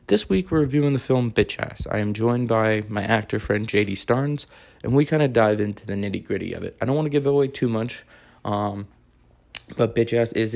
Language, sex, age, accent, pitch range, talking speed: English, male, 20-39, American, 105-120 Hz, 225 wpm